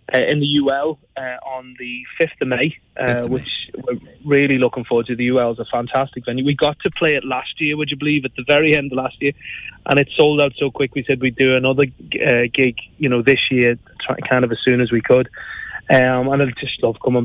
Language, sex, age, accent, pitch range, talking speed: English, male, 20-39, British, 125-145 Hz, 240 wpm